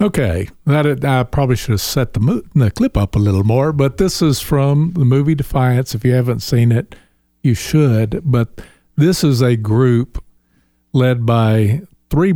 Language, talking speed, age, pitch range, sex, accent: English, 180 wpm, 50-69, 105-135 Hz, male, American